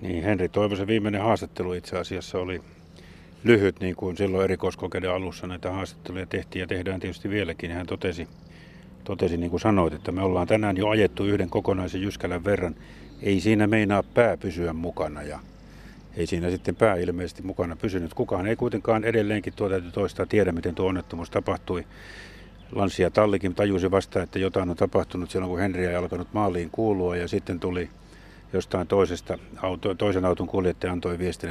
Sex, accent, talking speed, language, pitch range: male, native, 175 wpm, Finnish, 85-100 Hz